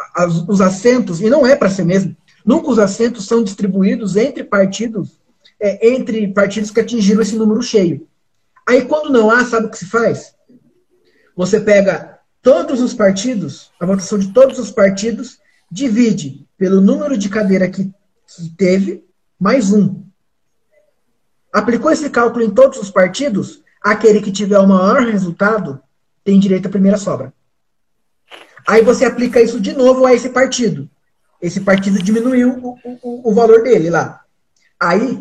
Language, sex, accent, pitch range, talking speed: Portuguese, male, Brazilian, 190-235 Hz, 155 wpm